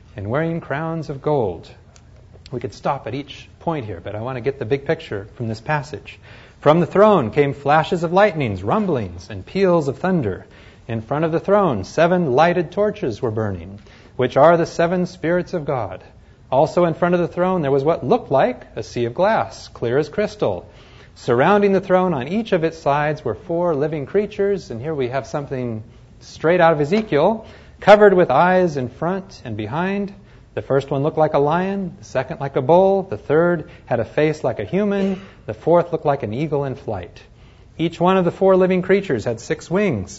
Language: English